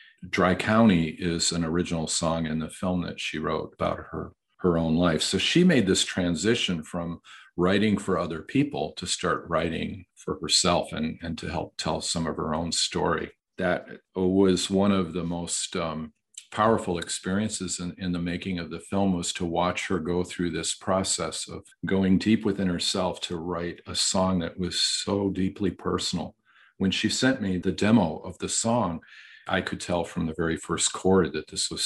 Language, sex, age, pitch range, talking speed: English, male, 50-69, 85-95 Hz, 190 wpm